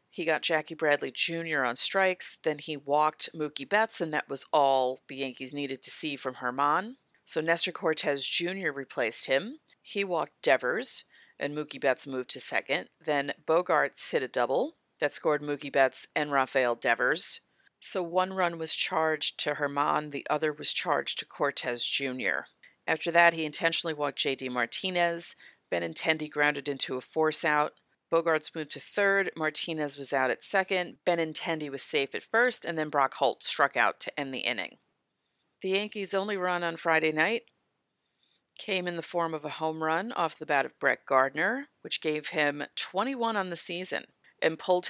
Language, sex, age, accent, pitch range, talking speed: English, female, 40-59, American, 145-185 Hz, 175 wpm